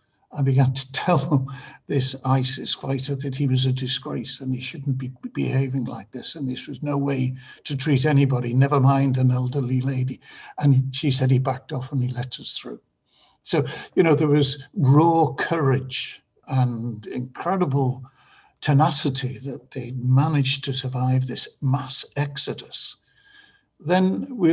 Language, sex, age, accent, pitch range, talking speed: English, male, 60-79, British, 130-140 Hz, 155 wpm